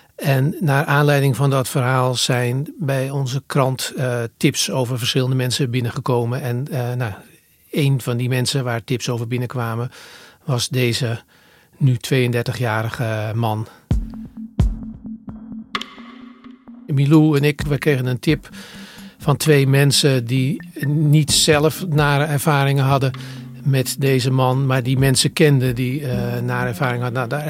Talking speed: 135 wpm